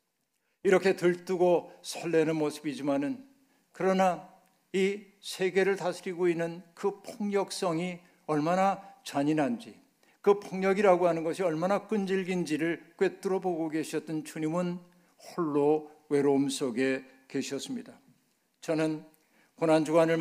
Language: Korean